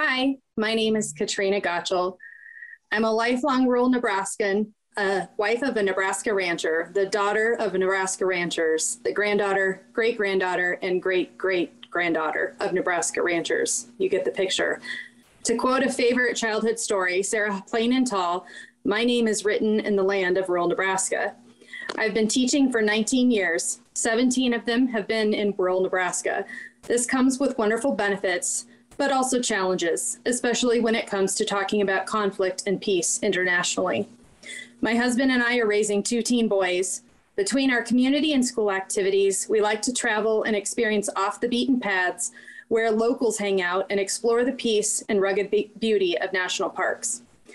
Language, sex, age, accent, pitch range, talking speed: English, female, 30-49, American, 195-240 Hz, 165 wpm